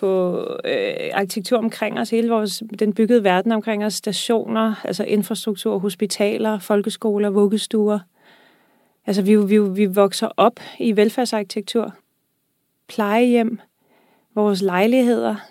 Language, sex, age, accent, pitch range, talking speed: Danish, female, 30-49, native, 210-240 Hz, 110 wpm